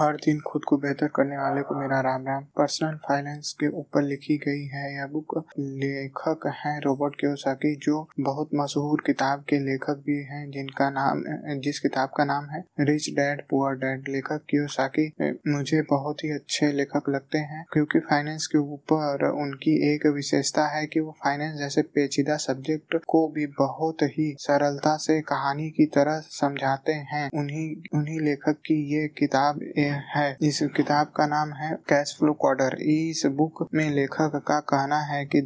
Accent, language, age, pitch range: native, Hindi, 20-39, 140-150 Hz